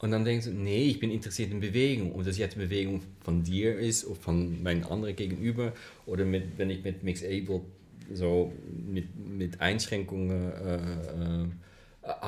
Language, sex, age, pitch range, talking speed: German, male, 30-49, 95-115 Hz, 170 wpm